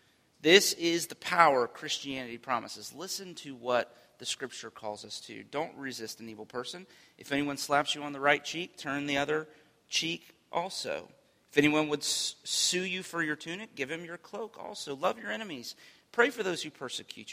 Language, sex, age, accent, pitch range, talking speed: English, male, 40-59, American, 125-170 Hz, 185 wpm